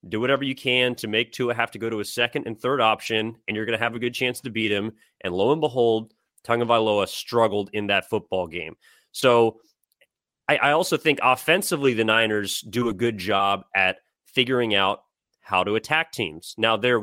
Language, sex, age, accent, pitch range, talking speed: English, male, 30-49, American, 110-130 Hz, 205 wpm